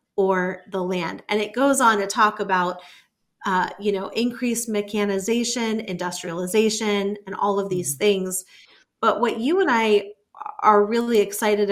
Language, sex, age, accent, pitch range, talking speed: English, female, 30-49, American, 190-215 Hz, 150 wpm